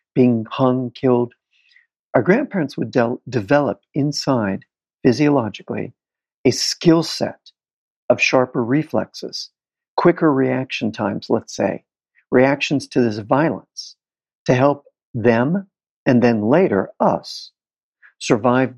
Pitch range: 120-155 Hz